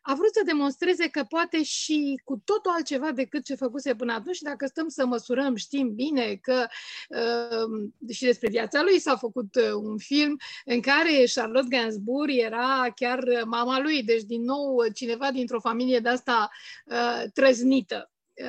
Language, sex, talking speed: English, female, 155 wpm